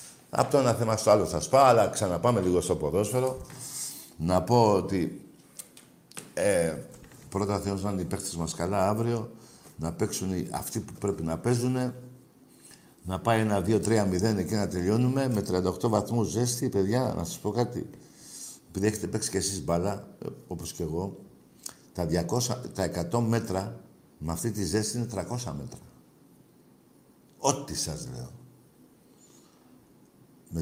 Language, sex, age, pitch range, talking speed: Greek, male, 60-79, 90-125 Hz, 145 wpm